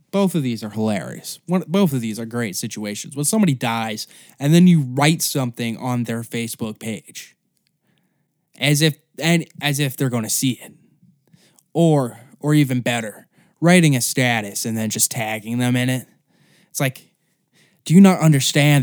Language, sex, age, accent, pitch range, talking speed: English, male, 10-29, American, 120-155 Hz, 165 wpm